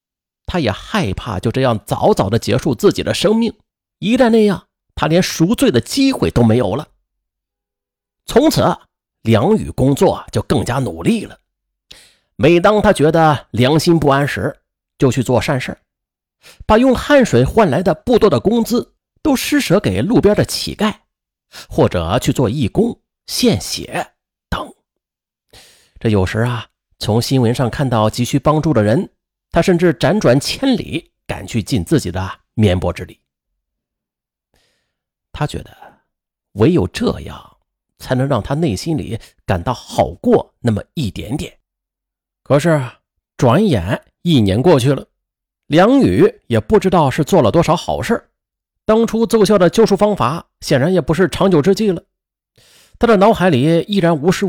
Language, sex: Chinese, male